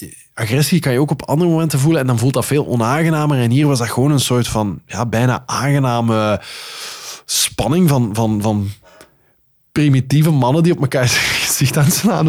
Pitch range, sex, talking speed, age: 110-140 Hz, male, 175 wpm, 20-39